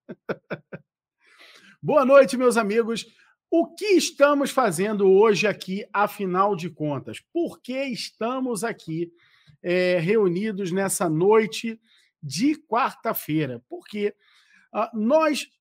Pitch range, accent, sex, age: 170-240 Hz, Brazilian, male, 40-59